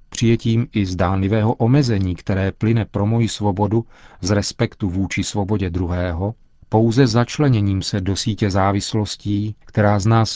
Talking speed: 135 wpm